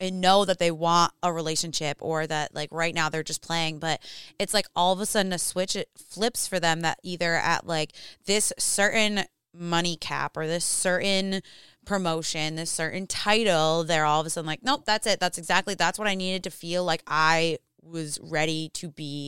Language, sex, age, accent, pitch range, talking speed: English, female, 20-39, American, 155-185 Hz, 200 wpm